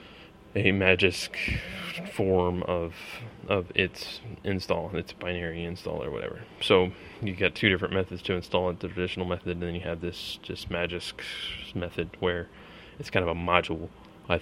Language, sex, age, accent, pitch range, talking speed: English, male, 20-39, American, 85-100 Hz, 160 wpm